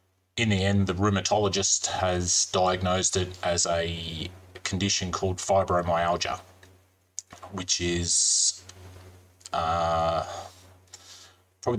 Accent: Australian